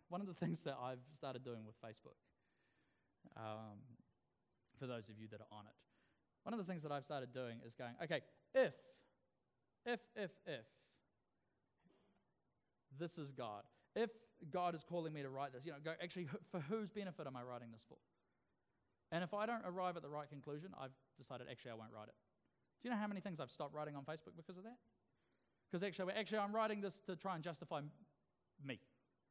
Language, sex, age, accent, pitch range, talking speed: English, male, 20-39, Australian, 130-190 Hz, 205 wpm